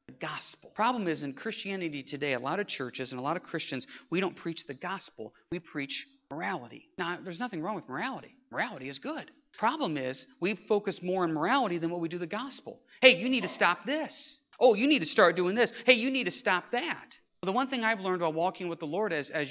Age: 40-59